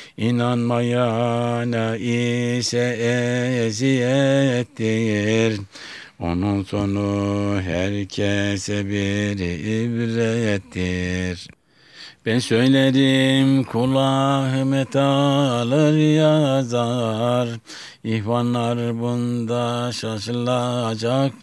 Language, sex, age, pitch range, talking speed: Turkish, male, 60-79, 105-125 Hz, 50 wpm